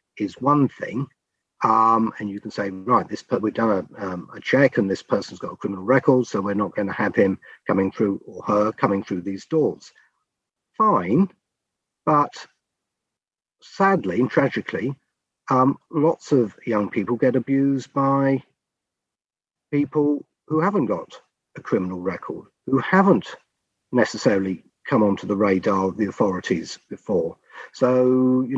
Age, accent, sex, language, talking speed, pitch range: 50-69, British, male, English, 145 wpm, 110-150 Hz